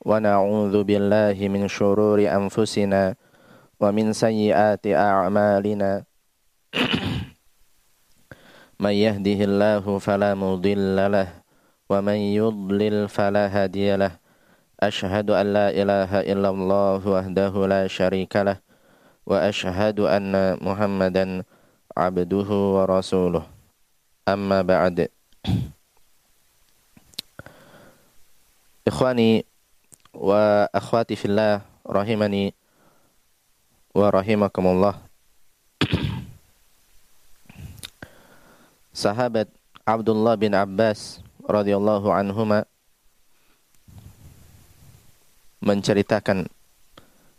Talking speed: 35 wpm